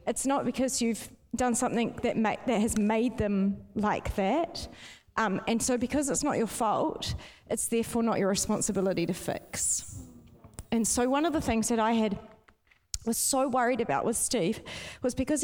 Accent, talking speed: Australian, 180 wpm